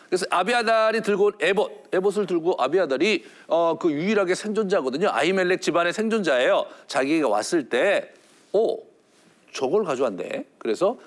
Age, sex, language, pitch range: 50-69, male, Korean, 180-235 Hz